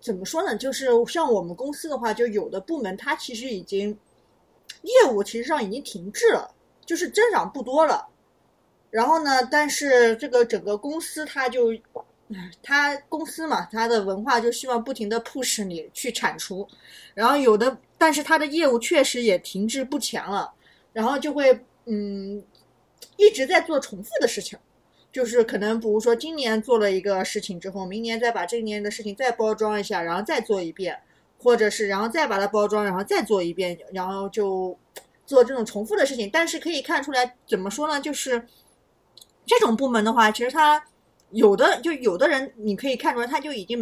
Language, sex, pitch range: Chinese, female, 210-295 Hz